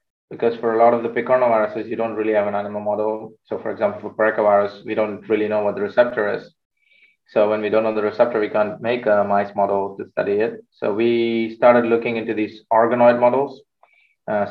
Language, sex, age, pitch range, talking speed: English, male, 20-39, 105-120 Hz, 215 wpm